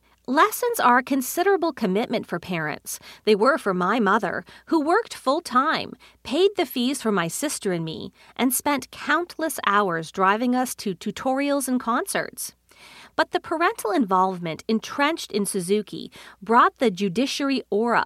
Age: 40-59